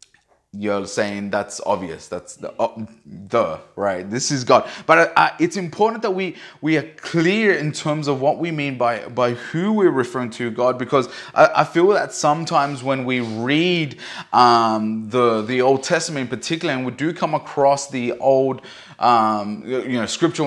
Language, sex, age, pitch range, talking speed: English, male, 20-39, 120-145 Hz, 180 wpm